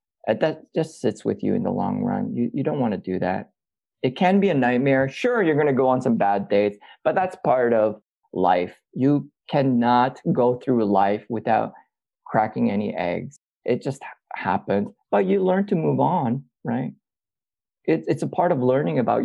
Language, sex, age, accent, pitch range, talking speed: English, male, 30-49, American, 115-150 Hz, 190 wpm